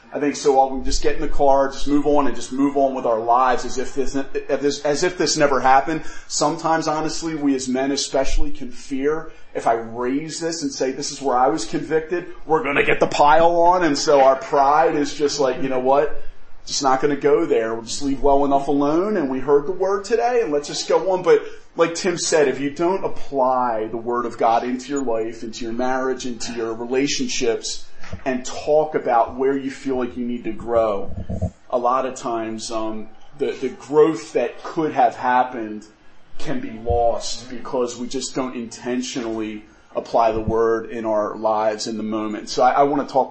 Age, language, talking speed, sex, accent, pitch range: 30-49, English, 215 wpm, male, American, 115-145 Hz